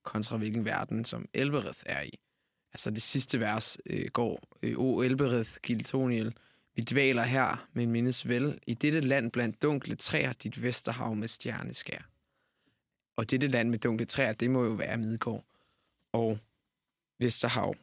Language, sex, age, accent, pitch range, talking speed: Danish, male, 20-39, native, 115-135 Hz, 150 wpm